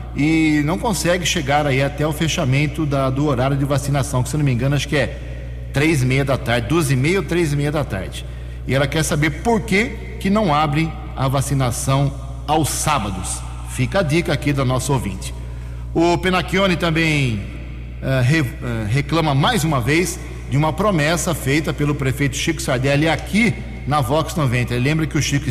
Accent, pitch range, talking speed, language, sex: Brazilian, 125-155 Hz, 190 wpm, Portuguese, male